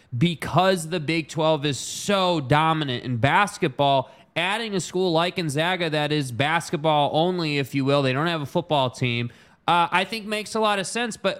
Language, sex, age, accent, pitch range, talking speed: English, male, 20-39, American, 150-185 Hz, 190 wpm